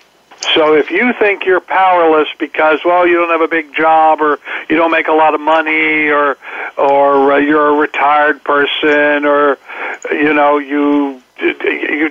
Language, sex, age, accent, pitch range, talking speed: English, male, 60-79, American, 150-180 Hz, 165 wpm